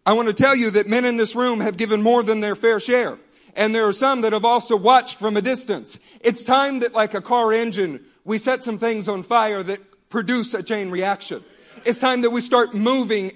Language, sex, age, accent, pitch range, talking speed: English, male, 50-69, American, 195-240 Hz, 235 wpm